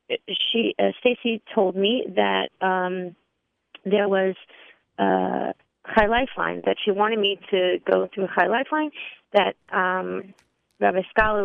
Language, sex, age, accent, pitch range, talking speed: English, female, 30-49, American, 175-220 Hz, 140 wpm